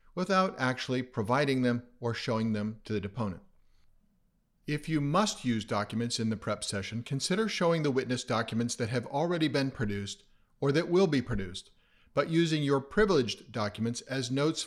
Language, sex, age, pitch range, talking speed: English, male, 50-69, 115-155 Hz, 170 wpm